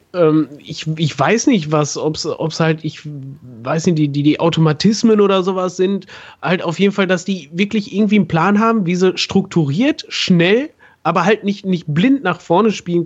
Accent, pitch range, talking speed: German, 155-195 Hz, 190 wpm